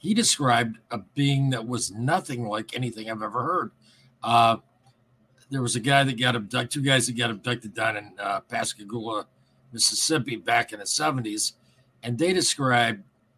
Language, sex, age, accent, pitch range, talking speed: English, male, 50-69, American, 120-165 Hz, 165 wpm